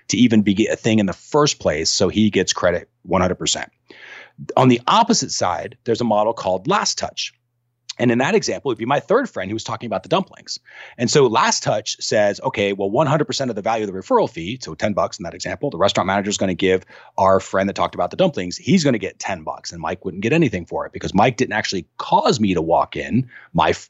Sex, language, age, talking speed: male, English, 30-49, 250 wpm